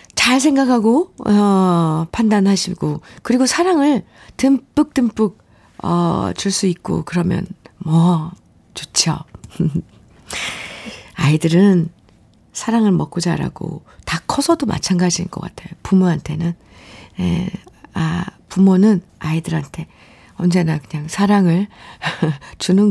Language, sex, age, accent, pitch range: Korean, female, 50-69, native, 160-220 Hz